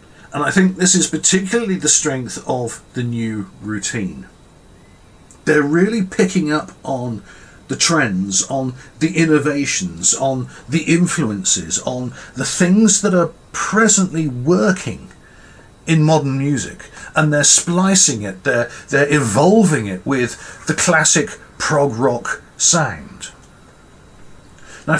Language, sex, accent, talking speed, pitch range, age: English, male, British, 120 wpm, 130-180 Hz, 50-69